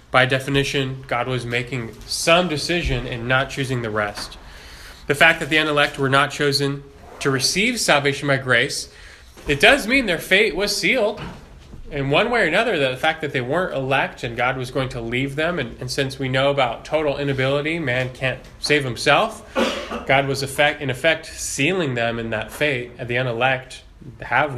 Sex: male